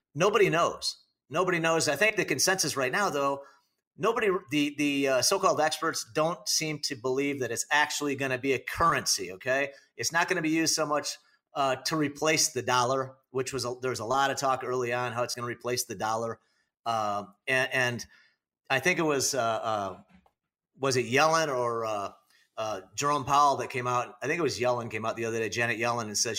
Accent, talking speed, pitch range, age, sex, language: American, 220 wpm, 125-155 Hz, 40-59, male, English